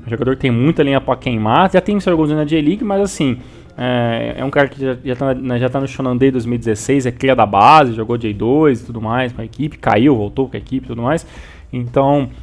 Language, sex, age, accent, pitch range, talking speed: Portuguese, male, 20-39, Brazilian, 120-160 Hz, 240 wpm